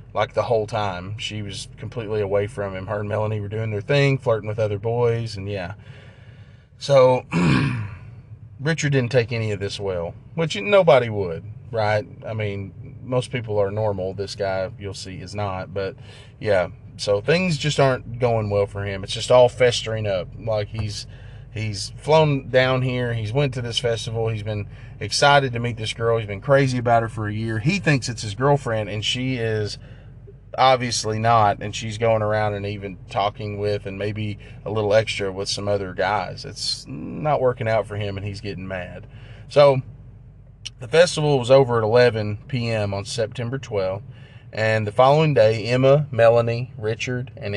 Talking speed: 180 wpm